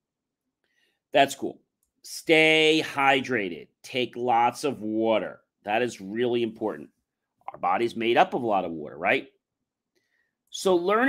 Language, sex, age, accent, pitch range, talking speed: English, male, 40-59, American, 115-160 Hz, 130 wpm